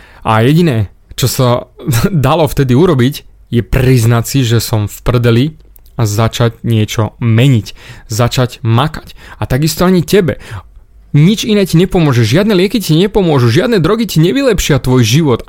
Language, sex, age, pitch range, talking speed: Slovak, male, 20-39, 120-155 Hz, 145 wpm